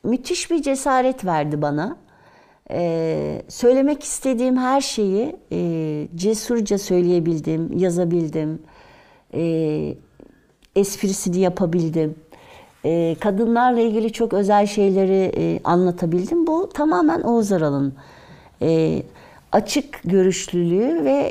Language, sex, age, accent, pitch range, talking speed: Turkish, female, 60-79, native, 165-225 Hz, 95 wpm